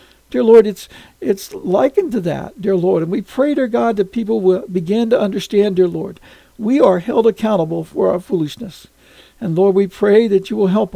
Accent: American